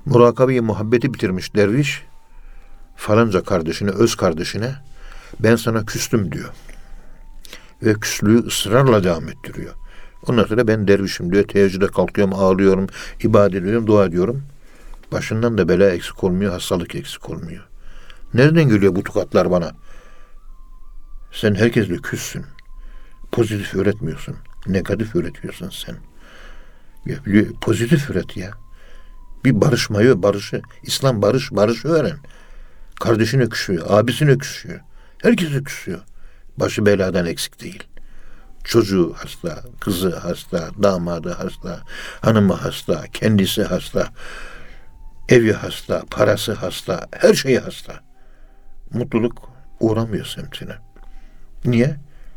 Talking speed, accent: 105 wpm, native